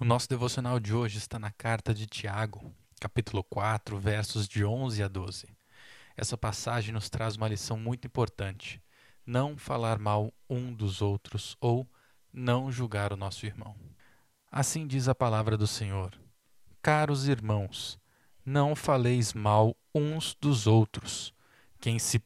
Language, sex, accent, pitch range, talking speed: Portuguese, male, Brazilian, 105-125 Hz, 145 wpm